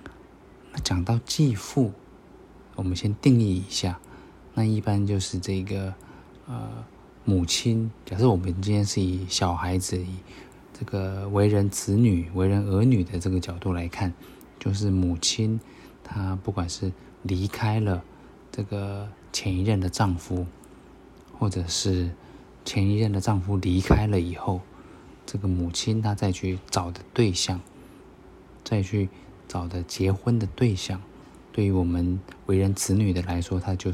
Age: 20-39